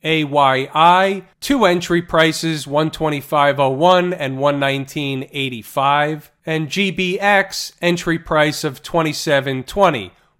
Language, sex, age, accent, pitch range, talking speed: English, male, 40-59, American, 145-185 Hz, 75 wpm